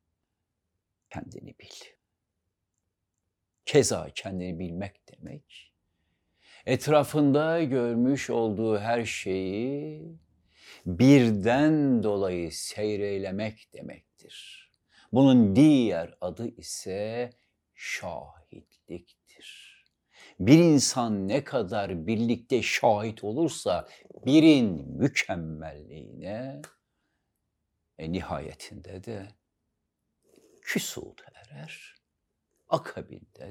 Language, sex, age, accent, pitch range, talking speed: Turkish, male, 60-79, native, 90-120 Hz, 65 wpm